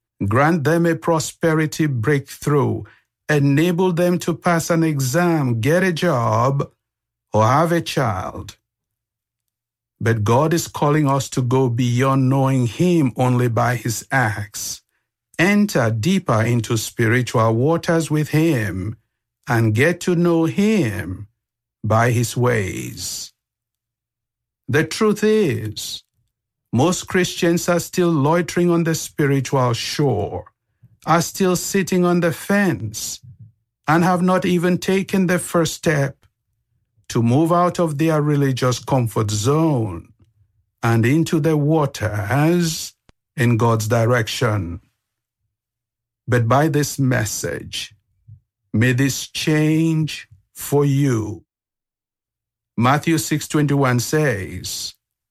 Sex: male